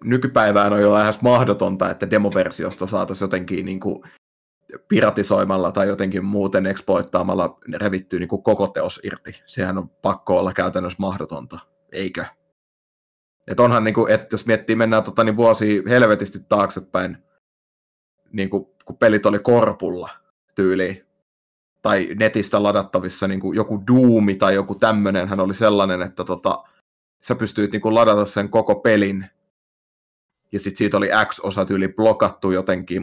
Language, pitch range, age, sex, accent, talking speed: Finnish, 95-110 Hz, 30-49, male, native, 140 wpm